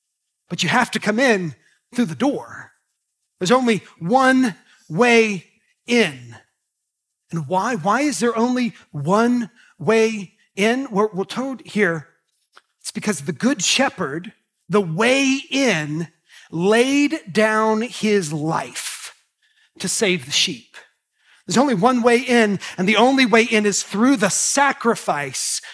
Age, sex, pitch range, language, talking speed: 30-49, male, 195-245 Hz, English, 130 wpm